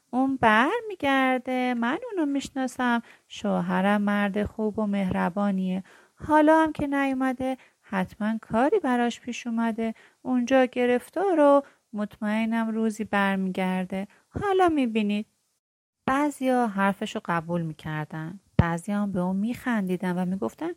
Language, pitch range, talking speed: Persian, 190-265 Hz, 105 wpm